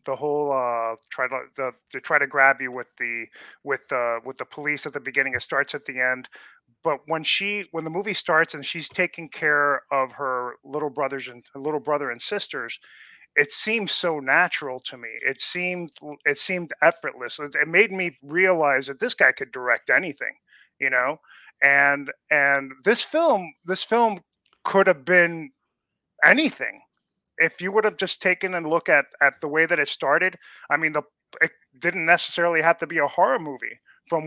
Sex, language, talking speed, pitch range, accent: male, English, 185 wpm, 140-175 Hz, American